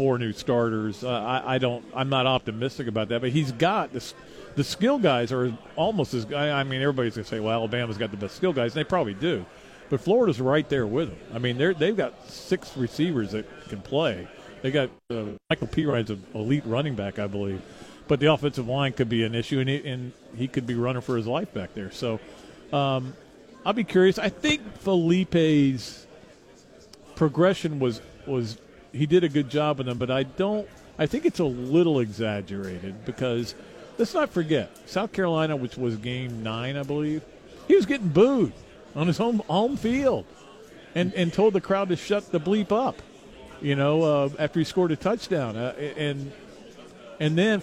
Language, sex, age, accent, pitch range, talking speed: English, male, 40-59, American, 120-175 Hz, 200 wpm